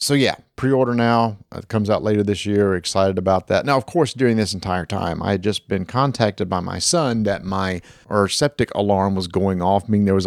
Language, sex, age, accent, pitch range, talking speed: English, male, 40-59, American, 100-115 Hz, 235 wpm